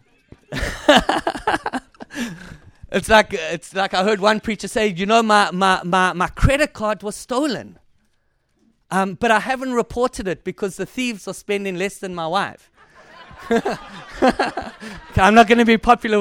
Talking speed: 155 wpm